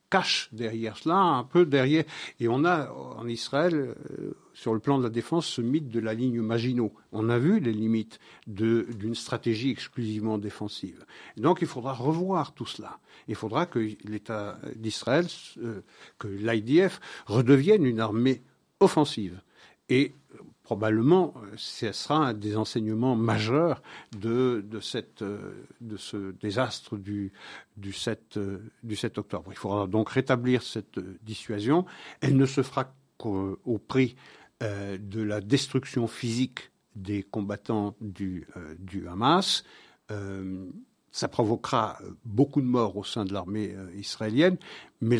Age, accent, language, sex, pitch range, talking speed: 60-79, French, French, male, 105-140 Hz, 145 wpm